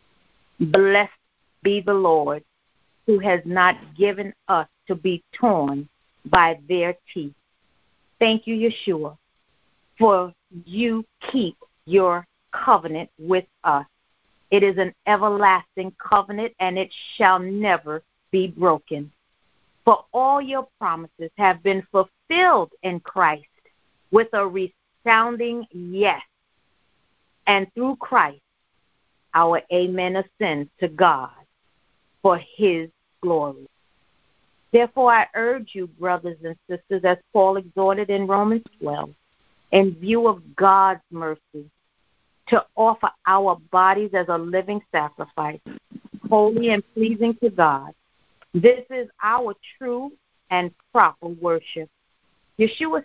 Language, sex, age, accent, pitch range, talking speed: English, female, 50-69, American, 175-220 Hz, 110 wpm